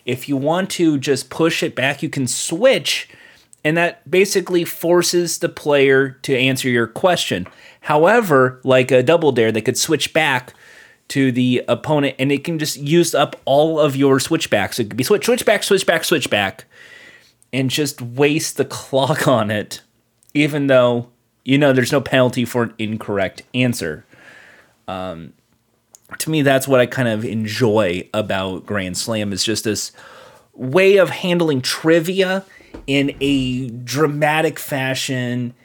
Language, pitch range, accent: English, 125-165 Hz, American